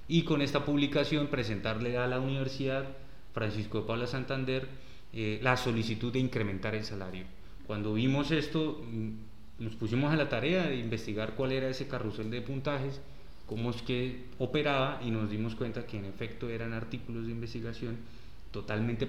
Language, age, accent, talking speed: Spanish, 30-49, Colombian, 160 wpm